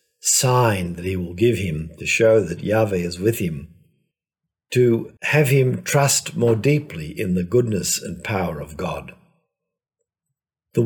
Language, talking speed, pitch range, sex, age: English, 150 wpm, 90-125 Hz, male, 50-69